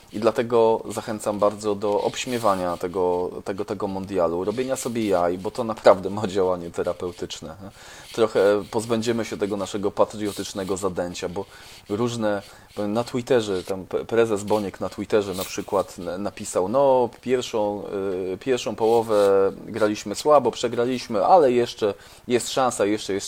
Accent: native